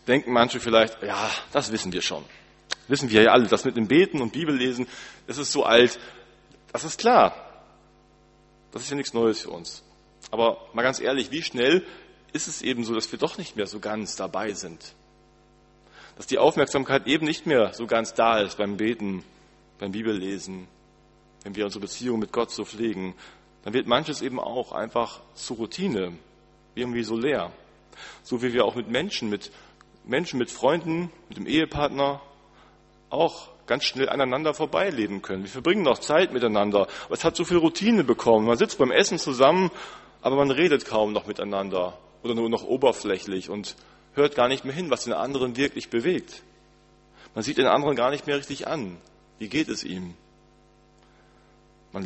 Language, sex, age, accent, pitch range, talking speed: German, male, 40-59, German, 105-140 Hz, 180 wpm